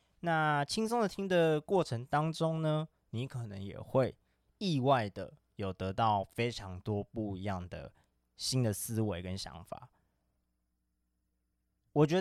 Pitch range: 95-130 Hz